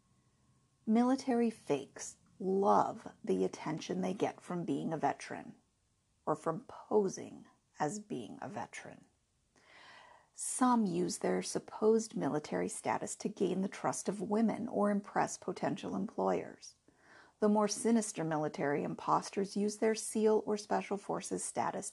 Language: English